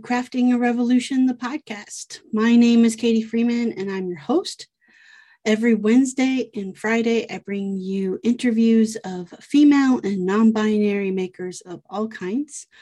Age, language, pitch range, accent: 30-49, English, 190-235 Hz, American